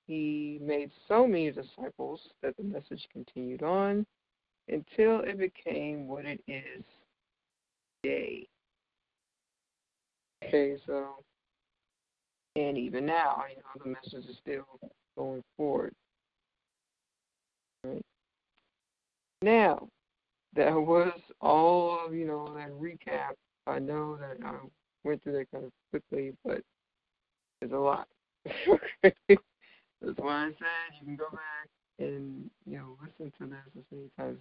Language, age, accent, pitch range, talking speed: English, 50-69, American, 140-165 Hz, 125 wpm